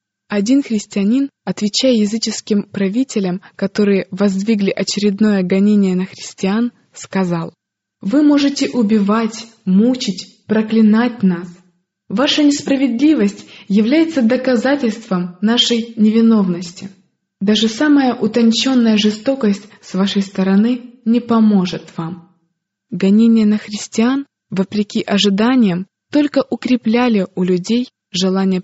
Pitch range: 190-235 Hz